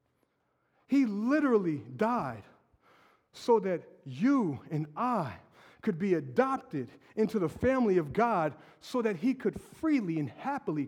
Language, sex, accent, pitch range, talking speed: English, male, American, 155-250 Hz, 125 wpm